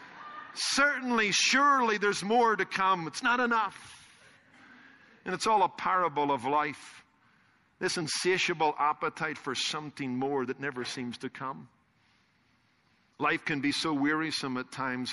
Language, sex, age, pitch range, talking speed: English, male, 50-69, 145-210 Hz, 135 wpm